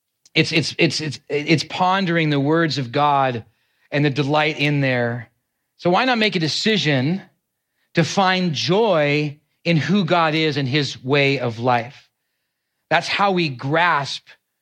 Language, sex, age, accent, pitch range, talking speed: English, male, 40-59, American, 130-165 Hz, 150 wpm